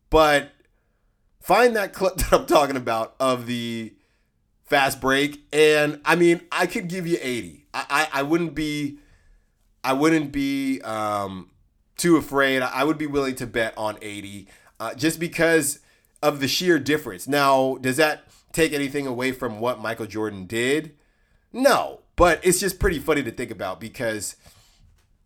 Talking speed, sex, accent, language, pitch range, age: 160 wpm, male, American, English, 105-140 Hz, 30-49